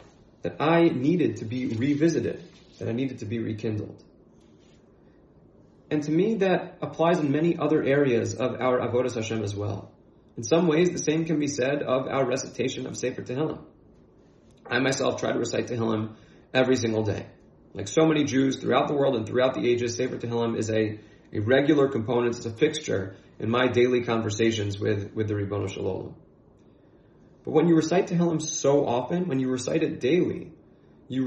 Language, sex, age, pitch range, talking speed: English, male, 30-49, 115-155 Hz, 180 wpm